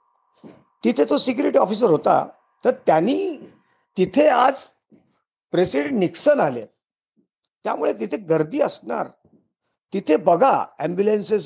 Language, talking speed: Marathi, 100 wpm